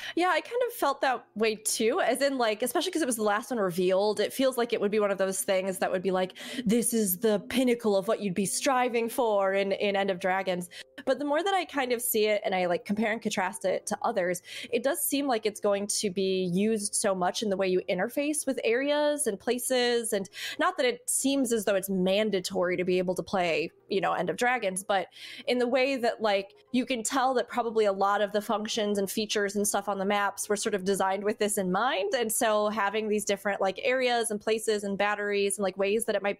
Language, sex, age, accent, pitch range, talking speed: English, female, 20-39, American, 195-245 Hz, 250 wpm